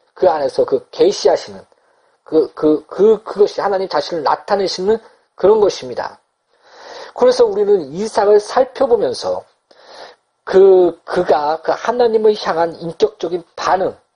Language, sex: Korean, male